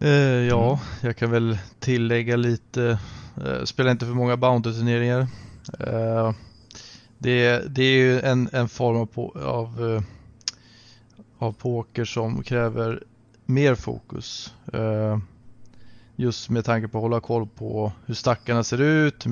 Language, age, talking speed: Swedish, 20-39, 110 wpm